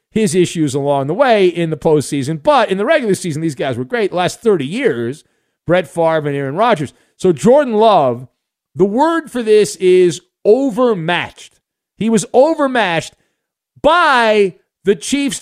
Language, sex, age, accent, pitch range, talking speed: English, male, 40-59, American, 155-210 Hz, 155 wpm